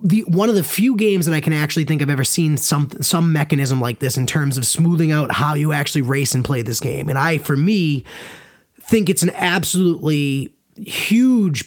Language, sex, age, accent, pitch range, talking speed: English, male, 30-49, American, 140-180 Hz, 205 wpm